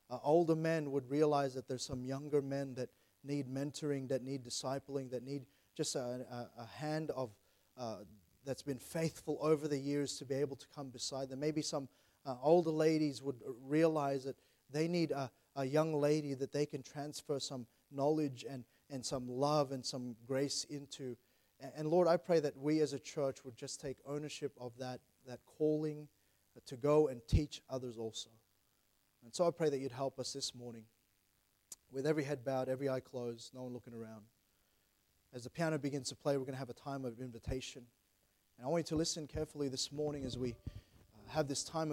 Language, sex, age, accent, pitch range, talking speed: English, male, 30-49, Australian, 125-155 Hz, 200 wpm